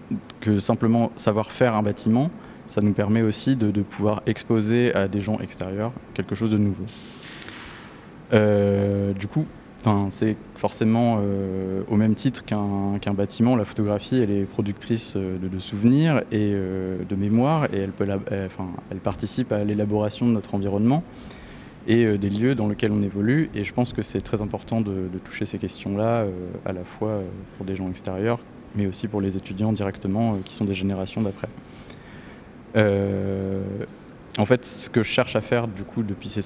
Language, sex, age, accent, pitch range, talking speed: French, male, 20-39, French, 100-115 Hz, 185 wpm